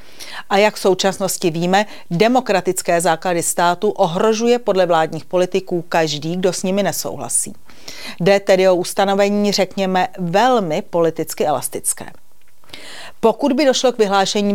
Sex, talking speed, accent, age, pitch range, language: female, 125 wpm, native, 40-59, 175-205 Hz, Czech